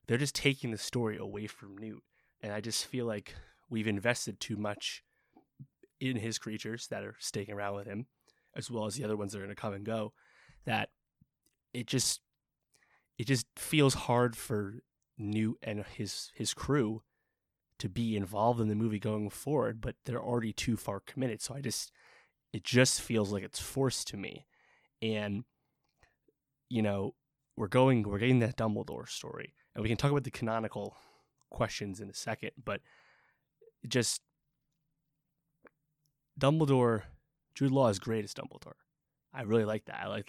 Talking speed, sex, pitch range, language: 170 wpm, male, 105-130 Hz, English